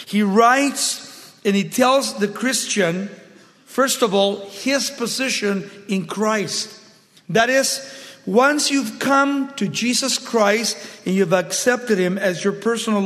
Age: 50-69